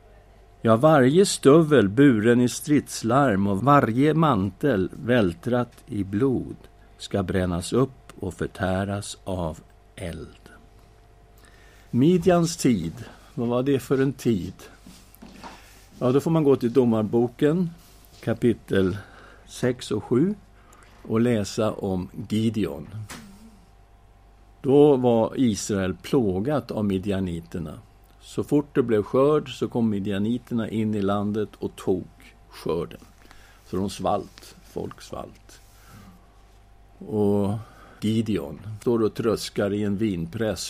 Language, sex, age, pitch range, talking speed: English, male, 60-79, 95-120 Hz, 110 wpm